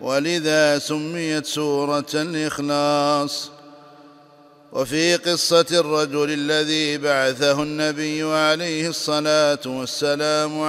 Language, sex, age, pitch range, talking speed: Arabic, male, 50-69, 145-155 Hz, 75 wpm